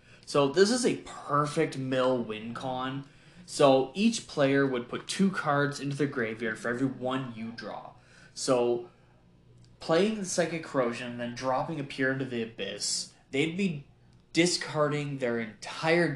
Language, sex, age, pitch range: English, male, 20-39, 115-155 Hz